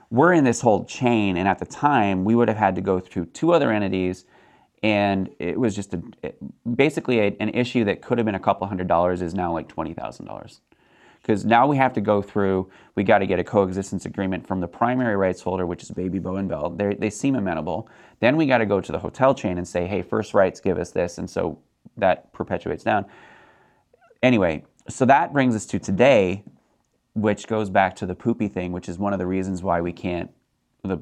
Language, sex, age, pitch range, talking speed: English, male, 30-49, 95-120 Hz, 215 wpm